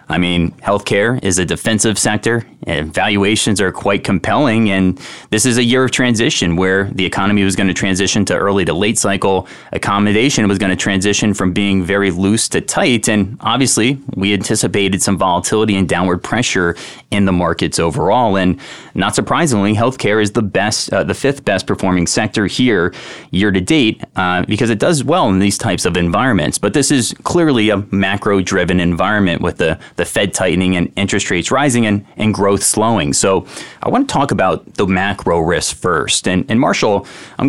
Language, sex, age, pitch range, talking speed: English, male, 20-39, 95-110 Hz, 185 wpm